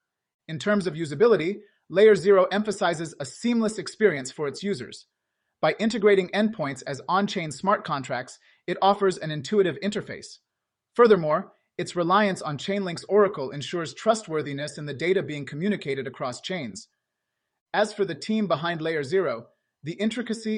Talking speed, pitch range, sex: 145 wpm, 150-200 Hz, male